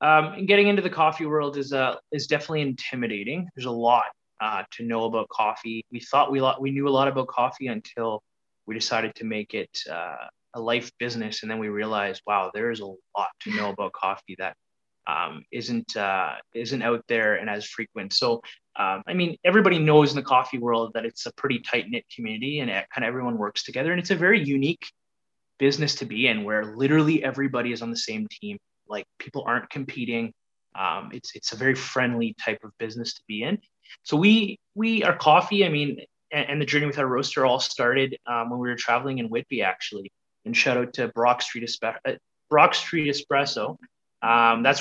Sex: male